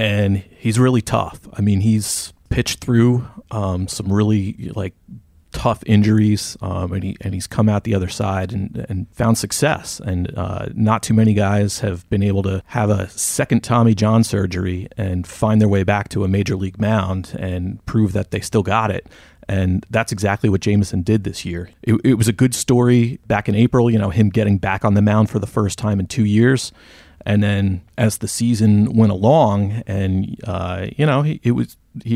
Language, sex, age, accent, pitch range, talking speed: English, male, 30-49, American, 95-115 Hz, 205 wpm